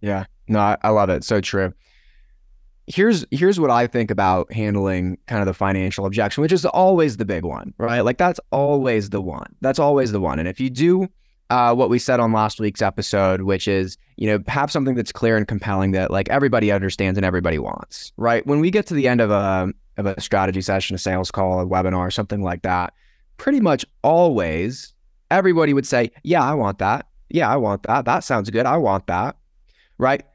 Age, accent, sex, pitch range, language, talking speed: 20-39, American, male, 95-135 Hz, English, 210 wpm